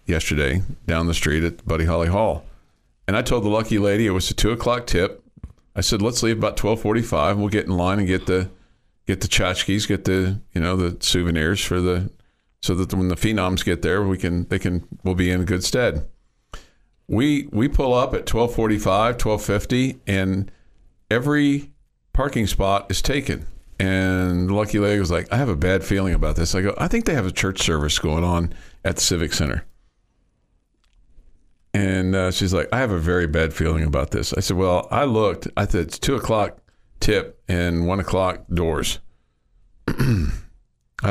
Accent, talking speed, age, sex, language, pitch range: American, 190 wpm, 50-69, male, English, 85-100 Hz